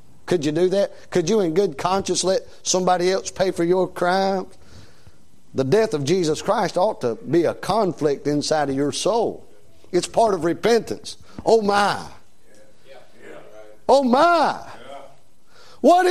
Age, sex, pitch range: 50-69, male, 140-210 Hz